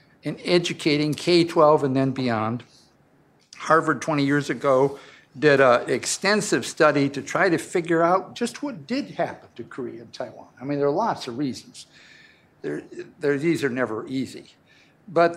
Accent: American